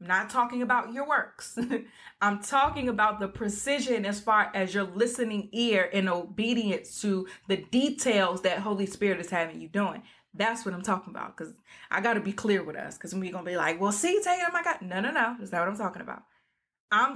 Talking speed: 225 wpm